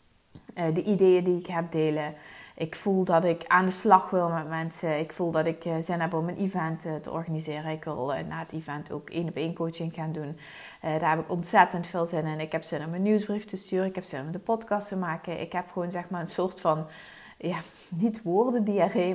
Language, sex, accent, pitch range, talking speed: Dutch, female, Dutch, 160-195 Hz, 245 wpm